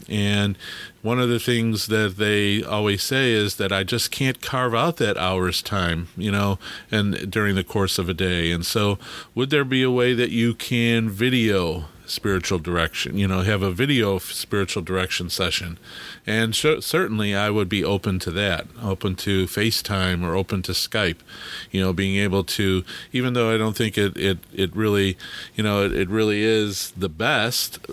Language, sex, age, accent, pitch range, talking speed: English, male, 40-59, American, 95-115 Hz, 185 wpm